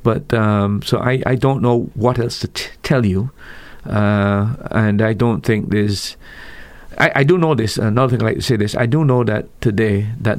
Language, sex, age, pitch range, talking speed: English, male, 50-69, 105-120 Hz, 215 wpm